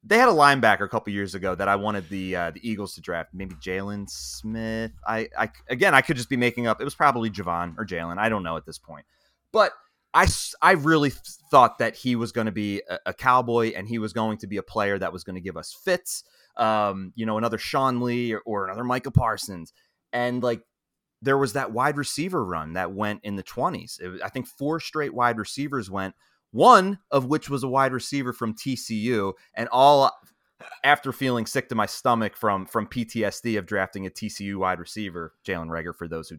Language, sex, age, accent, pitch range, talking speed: English, male, 30-49, American, 100-135 Hz, 220 wpm